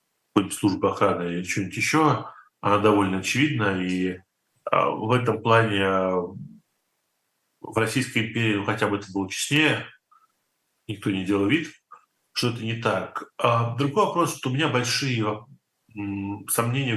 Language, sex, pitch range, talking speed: Russian, male, 100-120 Hz, 125 wpm